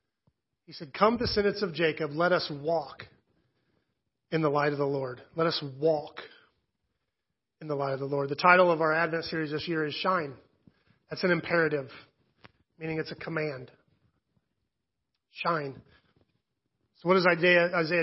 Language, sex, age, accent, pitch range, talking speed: English, male, 30-49, American, 155-185 Hz, 155 wpm